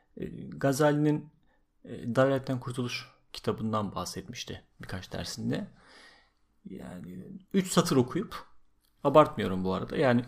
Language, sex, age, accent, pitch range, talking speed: Turkish, male, 40-59, native, 110-145 Hz, 90 wpm